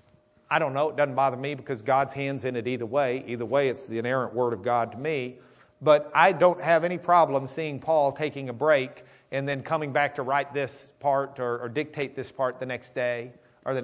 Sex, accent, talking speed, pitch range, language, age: male, American, 230 wpm, 135-195 Hz, English, 50-69